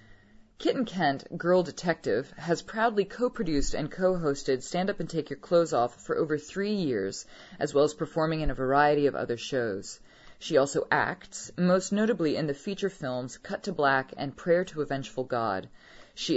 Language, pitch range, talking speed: English, 135-175 Hz, 180 wpm